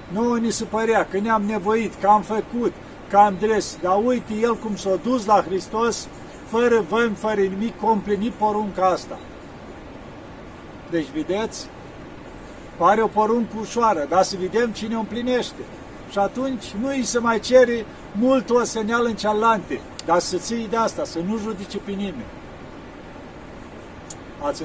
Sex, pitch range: male, 195-235 Hz